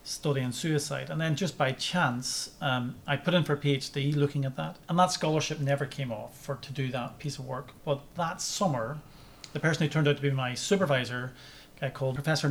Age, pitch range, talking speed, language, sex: 30-49, 130-150 Hz, 225 wpm, English, male